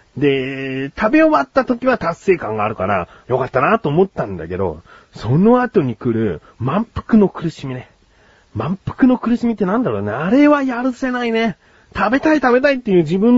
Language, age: Japanese, 40-59